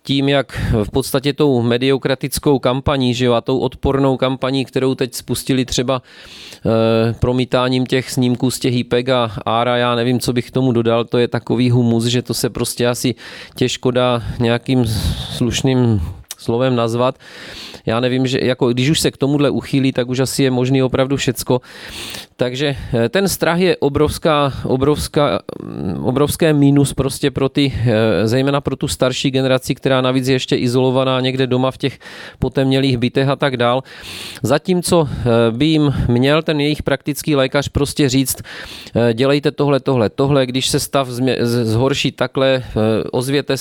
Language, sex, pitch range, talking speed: Czech, male, 120-140 Hz, 155 wpm